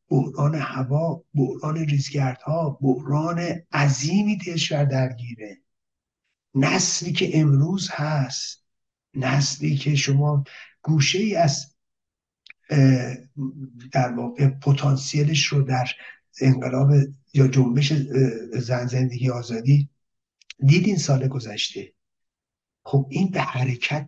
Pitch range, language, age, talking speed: 135-155 Hz, Persian, 50-69, 85 wpm